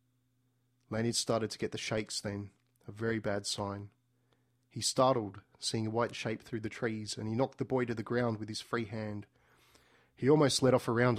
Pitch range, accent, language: 110-125 Hz, Australian, English